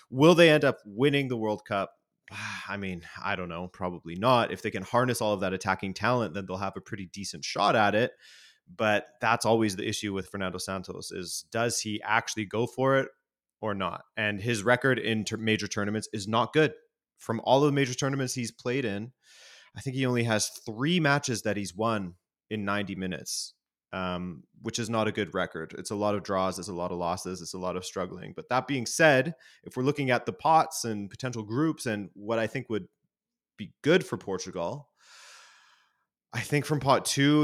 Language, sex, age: English, male, 20-39